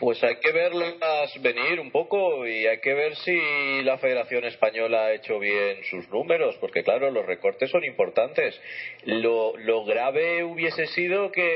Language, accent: Spanish, Spanish